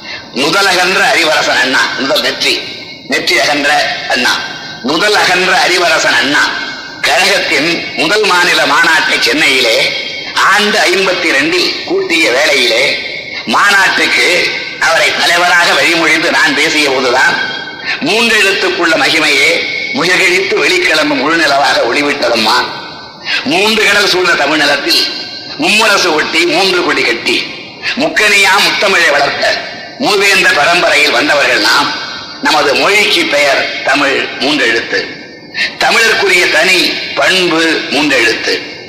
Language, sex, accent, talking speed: Tamil, male, native, 90 wpm